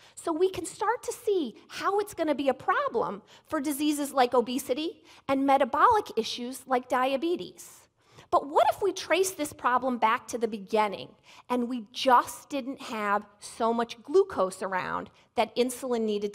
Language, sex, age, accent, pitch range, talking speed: English, female, 30-49, American, 230-330 Hz, 165 wpm